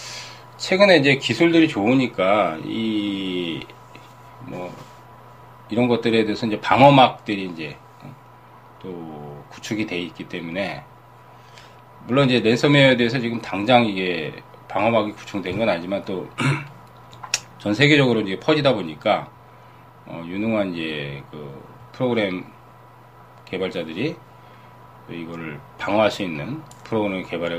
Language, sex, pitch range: Korean, male, 90-130 Hz